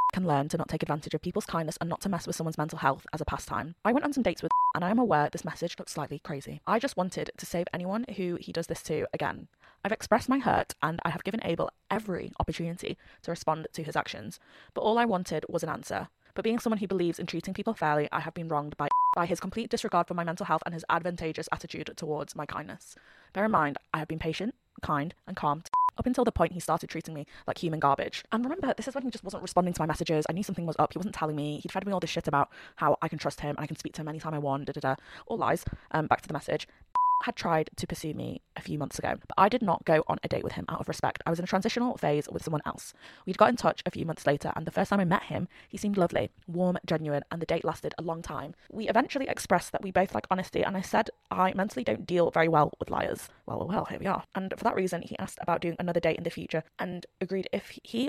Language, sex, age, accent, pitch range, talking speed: English, female, 20-39, British, 160-200 Hz, 280 wpm